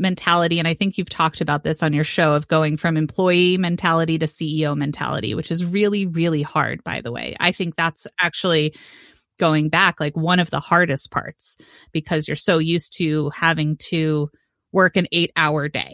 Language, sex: English, female